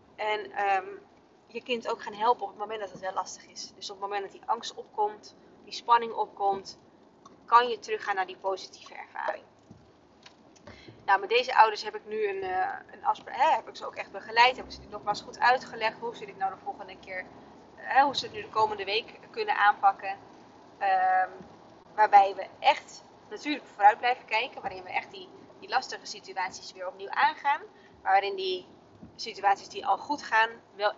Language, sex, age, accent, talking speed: Dutch, female, 20-39, Dutch, 195 wpm